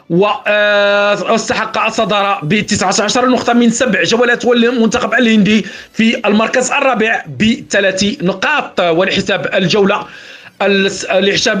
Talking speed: 95 wpm